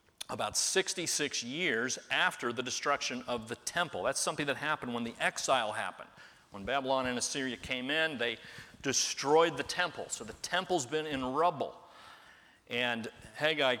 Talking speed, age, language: 150 wpm, 40-59, English